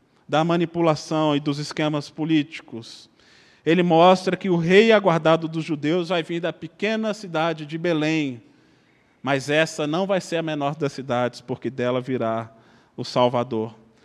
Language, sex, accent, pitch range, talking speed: Portuguese, male, Brazilian, 135-170 Hz, 150 wpm